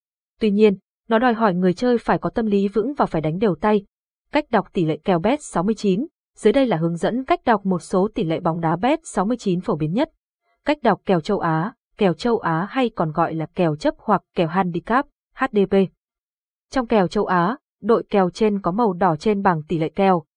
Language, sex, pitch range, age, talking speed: Vietnamese, female, 185-240 Hz, 20-39, 220 wpm